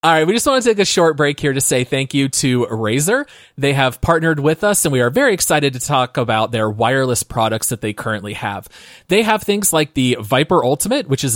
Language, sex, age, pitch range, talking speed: English, male, 30-49, 120-155 Hz, 245 wpm